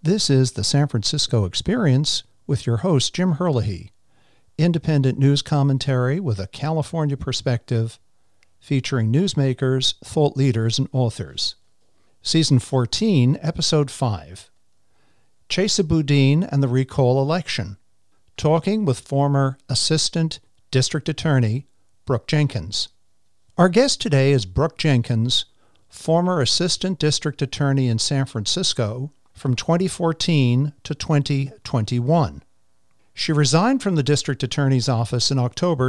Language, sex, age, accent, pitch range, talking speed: English, male, 50-69, American, 120-155 Hz, 115 wpm